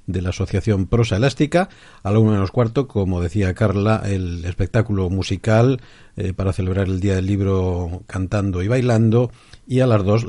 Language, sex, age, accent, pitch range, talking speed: Spanish, male, 50-69, Spanish, 95-115 Hz, 180 wpm